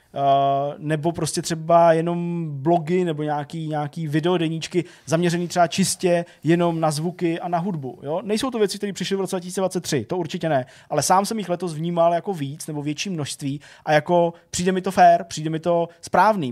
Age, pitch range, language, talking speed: 20-39, 140-165 Hz, Czech, 190 wpm